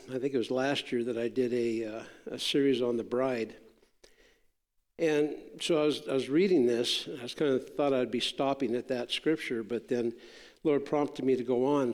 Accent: American